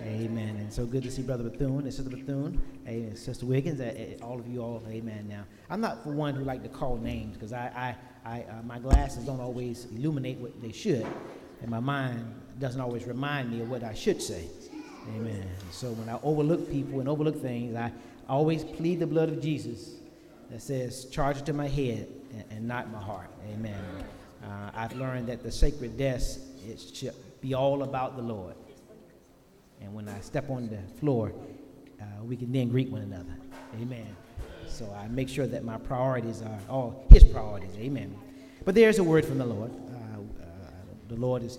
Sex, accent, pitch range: male, American, 115-135 Hz